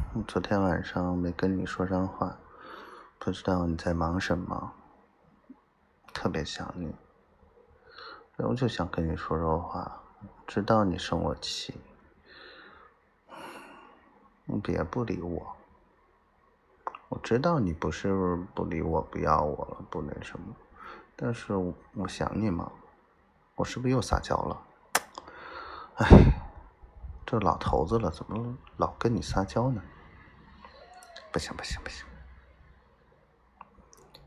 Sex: male